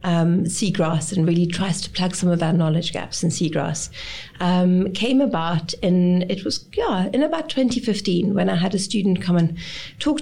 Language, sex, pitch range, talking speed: English, female, 175-220 Hz, 180 wpm